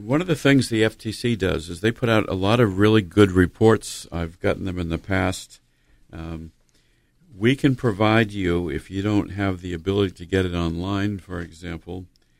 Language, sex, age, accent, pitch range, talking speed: English, male, 50-69, American, 80-105 Hz, 195 wpm